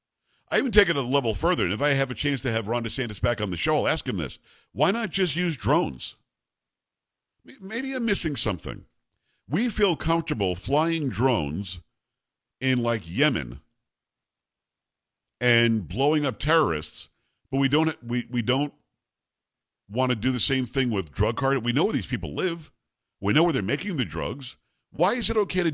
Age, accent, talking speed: 50-69, American, 185 wpm